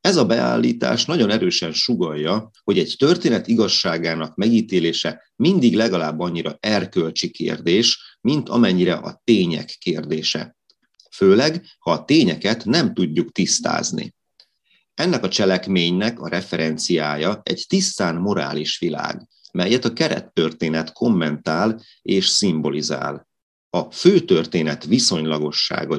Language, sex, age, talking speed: Hungarian, male, 30-49, 105 wpm